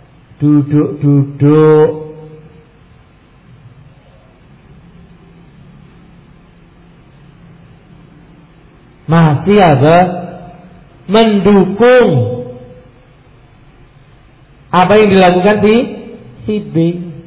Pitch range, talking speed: 140-185 Hz, 35 wpm